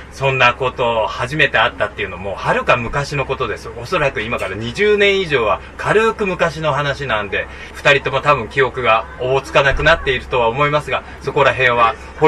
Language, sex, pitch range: Japanese, male, 115-165 Hz